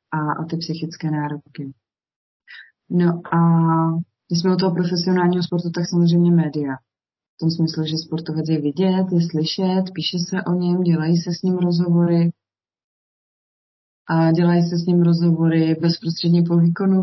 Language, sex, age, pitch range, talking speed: Slovak, female, 20-39, 155-175 Hz, 150 wpm